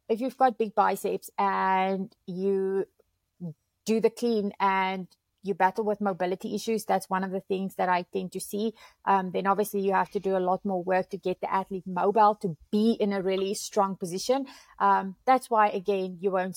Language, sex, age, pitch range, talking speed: English, female, 30-49, 190-215 Hz, 200 wpm